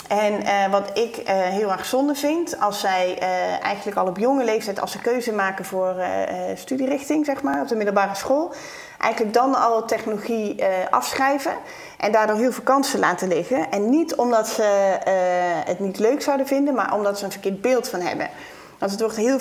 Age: 30-49